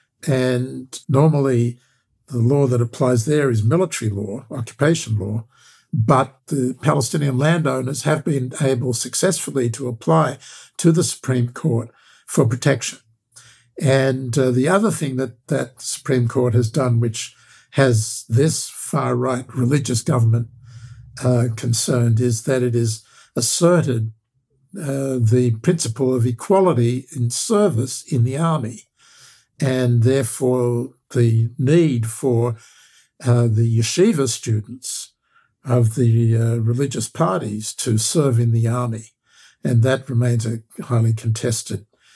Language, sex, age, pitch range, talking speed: English, male, 60-79, 115-135 Hz, 125 wpm